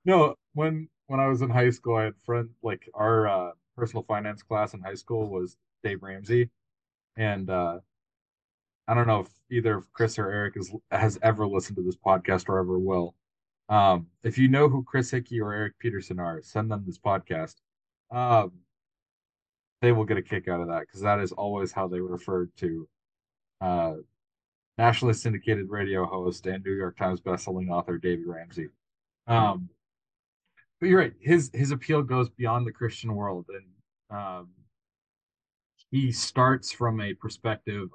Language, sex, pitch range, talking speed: English, male, 95-115 Hz, 170 wpm